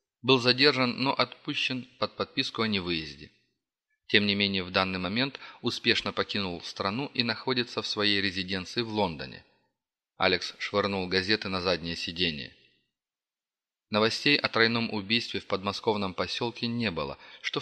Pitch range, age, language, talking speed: 100-120 Hz, 30-49, Russian, 135 wpm